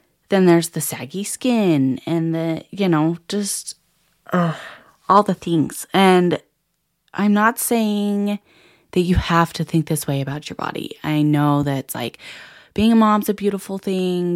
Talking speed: 160 wpm